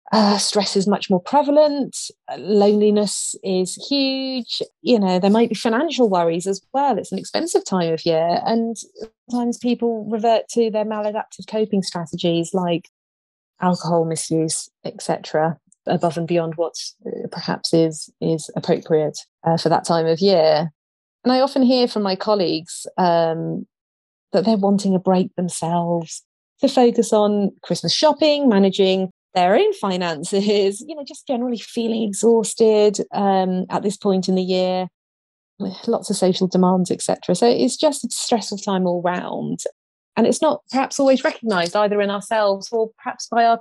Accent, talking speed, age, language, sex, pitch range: British, 155 wpm, 30-49, English, female, 170-235 Hz